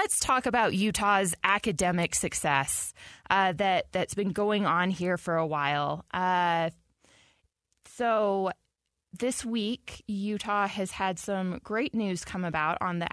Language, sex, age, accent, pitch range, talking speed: English, female, 20-39, American, 175-220 Hz, 135 wpm